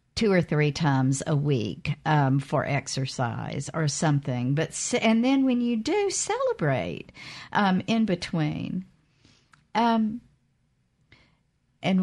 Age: 50-69